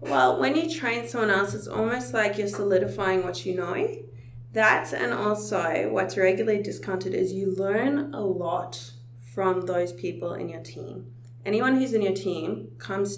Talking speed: 170 wpm